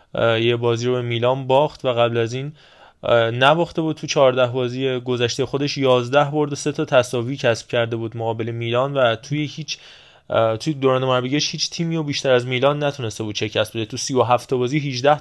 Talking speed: 195 wpm